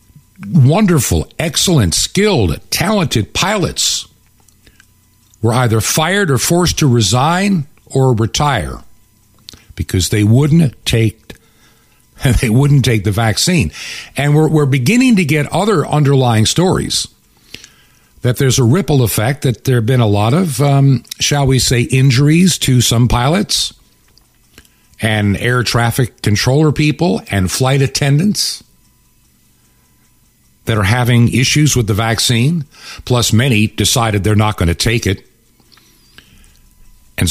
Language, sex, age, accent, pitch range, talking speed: English, male, 60-79, American, 110-155 Hz, 125 wpm